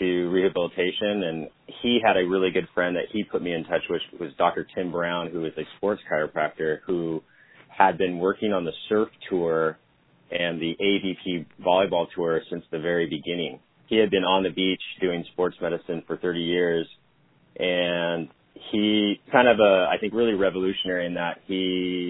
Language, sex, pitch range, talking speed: English, male, 85-95 Hz, 180 wpm